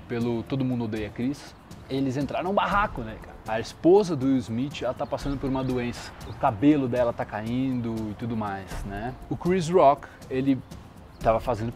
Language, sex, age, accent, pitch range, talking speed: Portuguese, male, 20-39, Brazilian, 115-150 Hz, 190 wpm